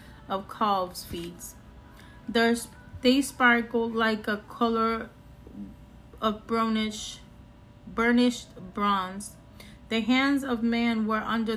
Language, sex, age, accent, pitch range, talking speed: Spanish, female, 30-49, American, 200-235 Hz, 100 wpm